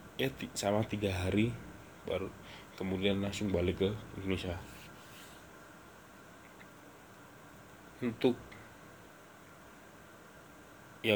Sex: male